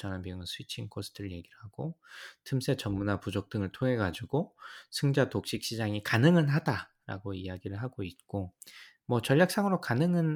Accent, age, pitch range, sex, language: native, 20-39, 95-125 Hz, male, Korean